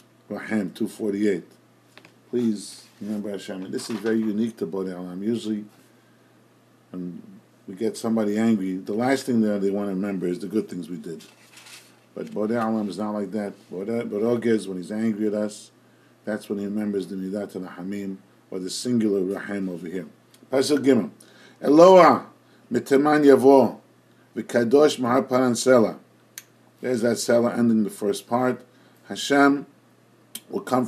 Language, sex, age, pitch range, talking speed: English, male, 50-69, 100-125 Hz, 155 wpm